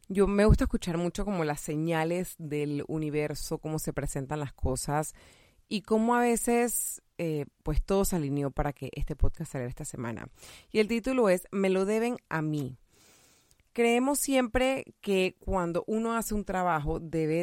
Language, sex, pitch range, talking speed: Spanish, female, 150-200 Hz, 170 wpm